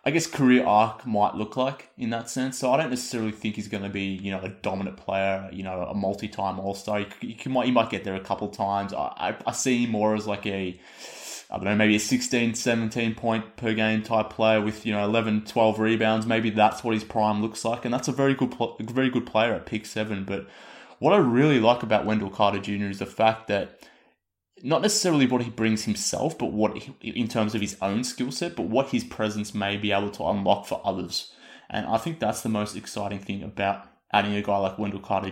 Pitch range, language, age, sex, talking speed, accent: 100-115 Hz, English, 20-39, male, 235 wpm, Australian